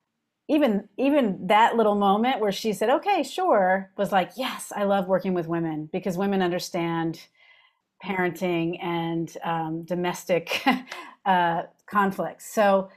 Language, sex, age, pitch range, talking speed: English, female, 40-59, 175-220 Hz, 130 wpm